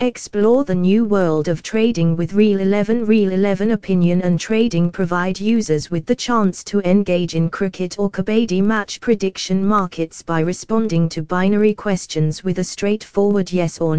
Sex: female